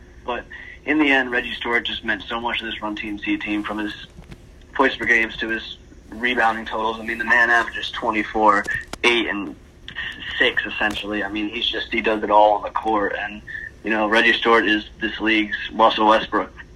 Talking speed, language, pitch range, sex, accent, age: 205 wpm, English, 105-115 Hz, male, American, 30-49